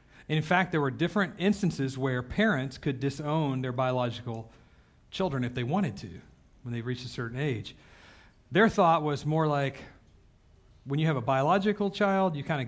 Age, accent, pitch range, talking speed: 40-59, American, 115-165 Hz, 175 wpm